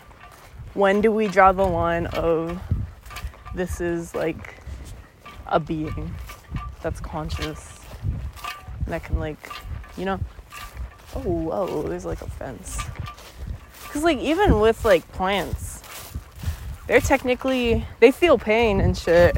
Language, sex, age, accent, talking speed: English, female, 20-39, American, 120 wpm